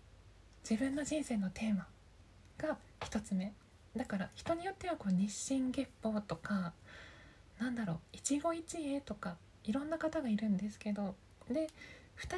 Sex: female